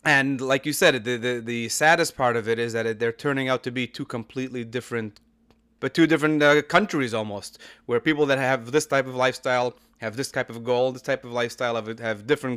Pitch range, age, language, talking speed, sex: 120-150 Hz, 30-49, English, 225 wpm, male